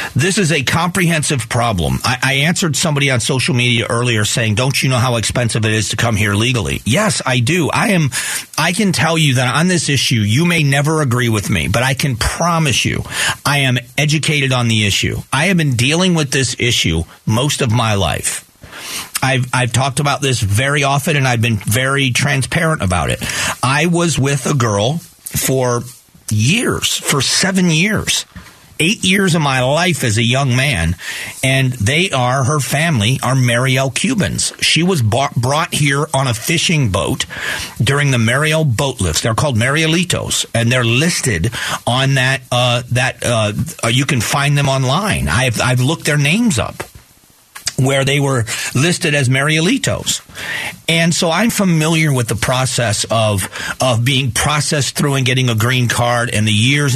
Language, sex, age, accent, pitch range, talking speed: English, male, 40-59, American, 120-155 Hz, 180 wpm